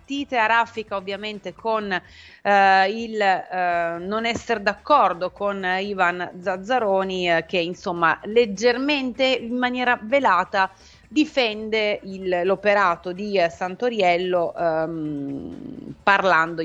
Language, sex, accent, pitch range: Italian, female, native, 170-205 Hz